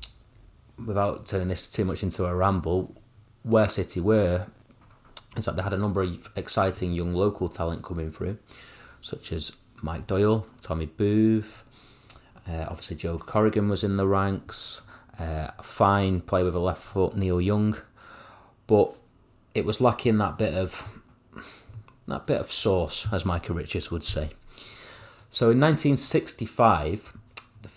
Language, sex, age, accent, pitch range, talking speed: English, male, 30-49, British, 90-110 Hz, 145 wpm